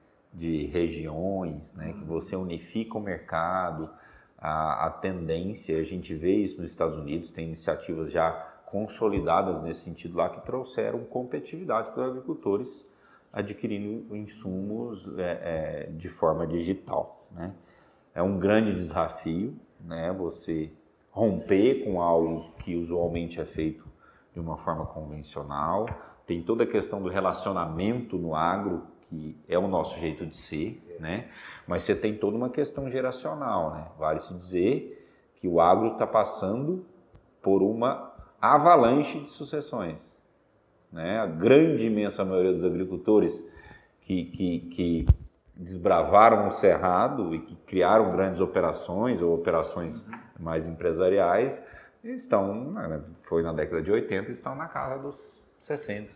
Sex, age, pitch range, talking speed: male, 40-59, 80-105 Hz, 135 wpm